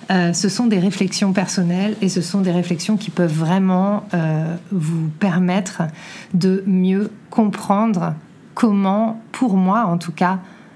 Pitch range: 175-210 Hz